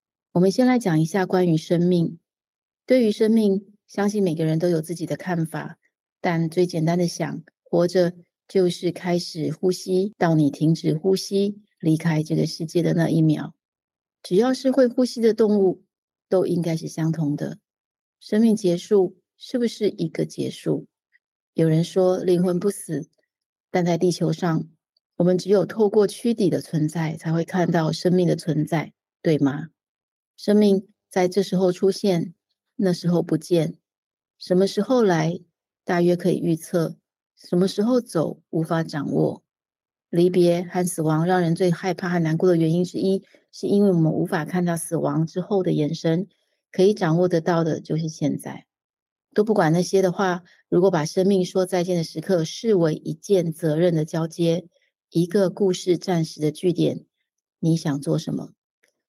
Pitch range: 165-190 Hz